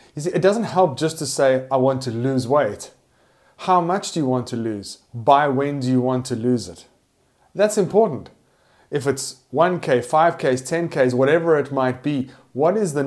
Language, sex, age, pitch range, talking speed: English, male, 30-49, 130-165 Hz, 195 wpm